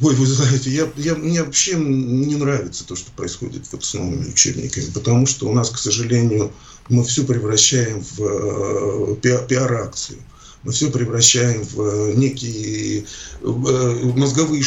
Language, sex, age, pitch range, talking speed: Russian, male, 40-59, 120-145 Hz, 125 wpm